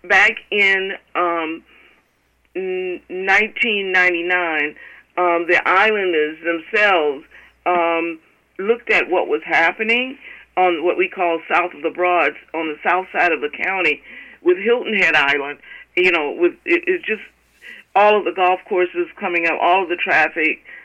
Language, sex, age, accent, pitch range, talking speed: English, female, 50-69, American, 165-240 Hz, 140 wpm